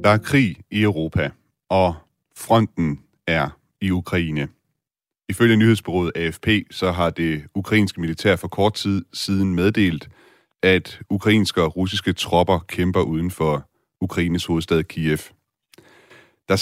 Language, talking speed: Danish, 125 wpm